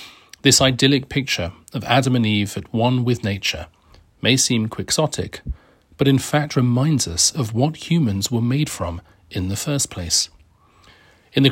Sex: male